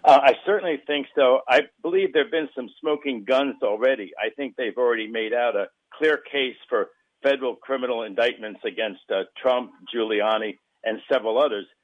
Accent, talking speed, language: American, 170 wpm, English